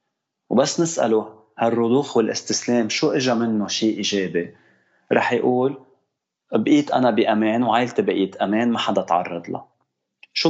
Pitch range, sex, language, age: 100-120 Hz, male, Arabic, 30-49